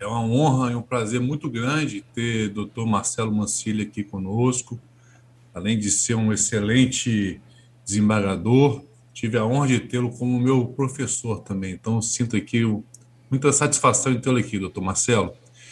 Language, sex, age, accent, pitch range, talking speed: Portuguese, male, 20-39, Brazilian, 115-145 Hz, 150 wpm